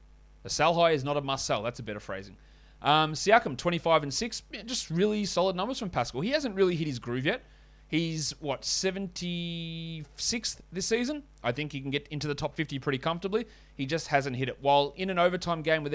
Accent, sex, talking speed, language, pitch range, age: Australian, male, 215 wpm, English, 130-165 Hz, 30-49